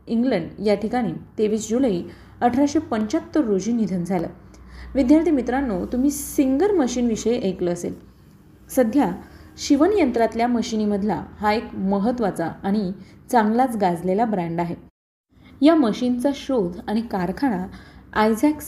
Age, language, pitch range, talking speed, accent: 20-39, Marathi, 200-270 Hz, 110 wpm, native